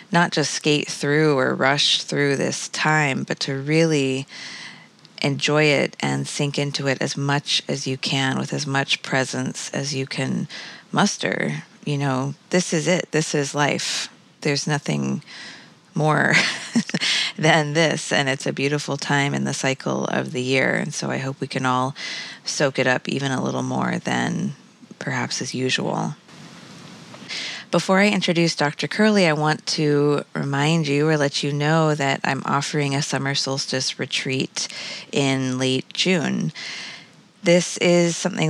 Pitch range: 135-160 Hz